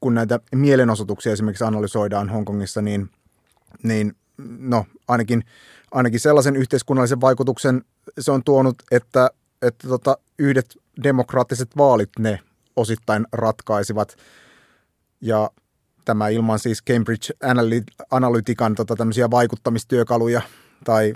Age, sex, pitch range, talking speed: 30-49, male, 110-130 Hz, 100 wpm